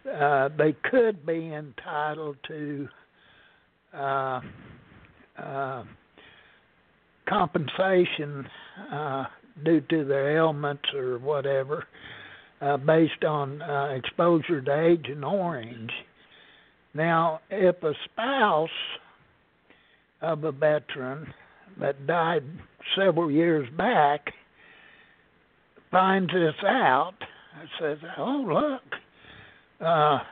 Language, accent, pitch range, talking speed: English, American, 150-185 Hz, 85 wpm